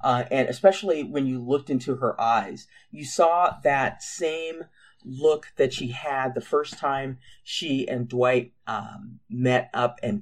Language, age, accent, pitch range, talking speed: English, 40-59, American, 120-150 Hz, 160 wpm